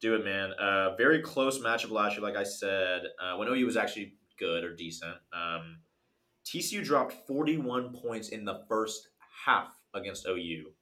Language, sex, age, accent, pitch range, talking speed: English, male, 30-49, American, 90-110 Hz, 185 wpm